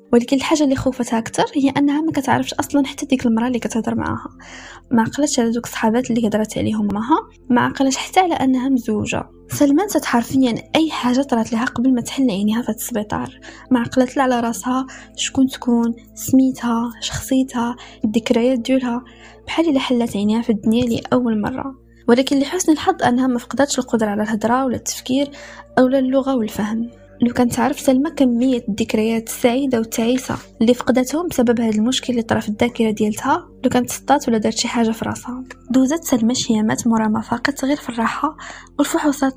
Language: Arabic